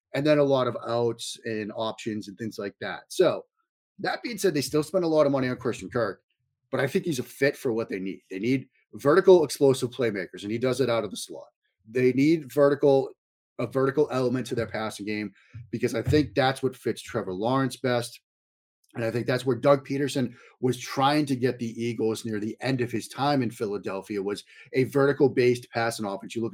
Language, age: English, 30-49